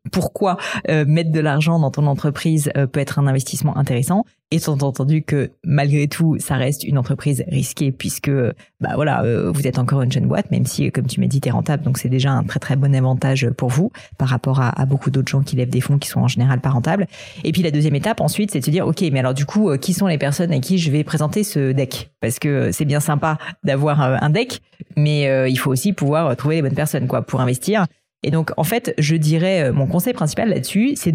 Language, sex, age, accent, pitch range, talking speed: French, female, 30-49, French, 140-175 Hz, 245 wpm